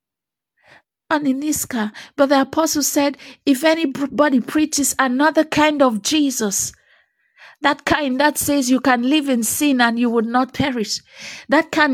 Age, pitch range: 50-69, 260-300 Hz